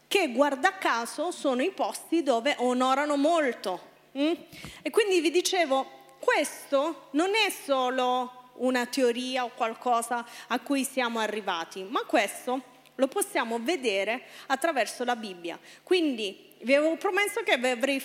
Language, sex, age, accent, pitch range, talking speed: Italian, female, 30-49, native, 245-320 Hz, 135 wpm